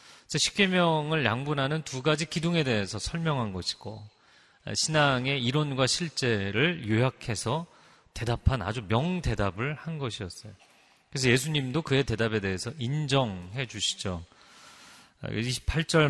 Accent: native